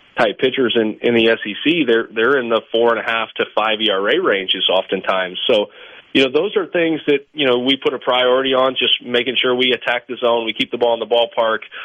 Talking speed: 240 wpm